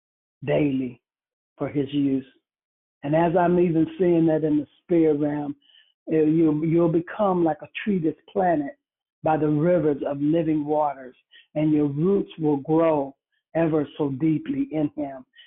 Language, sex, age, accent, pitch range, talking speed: English, male, 60-79, American, 150-190 Hz, 145 wpm